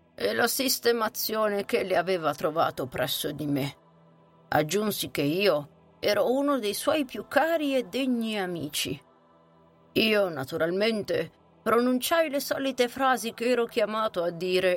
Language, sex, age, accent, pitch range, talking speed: Italian, female, 50-69, native, 175-230 Hz, 135 wpm